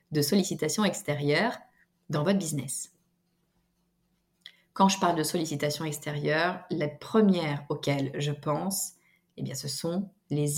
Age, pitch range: 30-49, 150-190 Hz